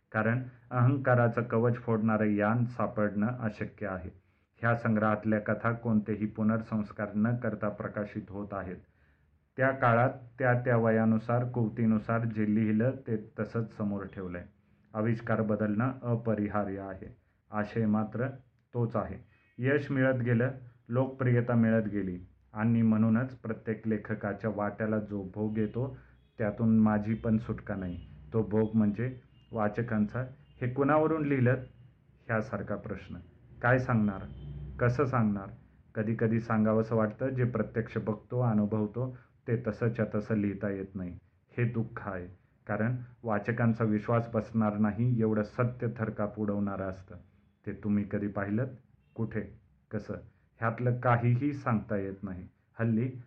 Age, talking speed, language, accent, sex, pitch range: 40-59, 125 wpm, Marathi, native, male, 105-120 Hz